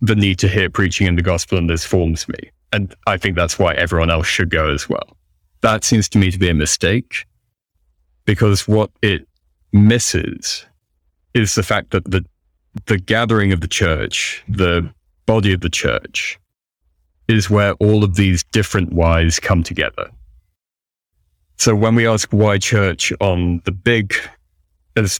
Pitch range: 85-105 Hz